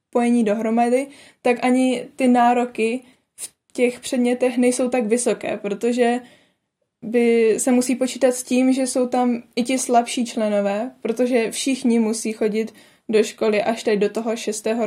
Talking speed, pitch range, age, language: 145 wpm, 220-250 Hz, 20-39, Czech